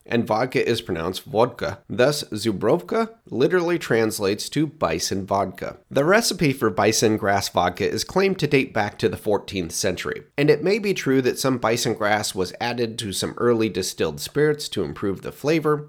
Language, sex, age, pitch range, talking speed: English, male, 30-49, 110-155 Hz, 180 wpm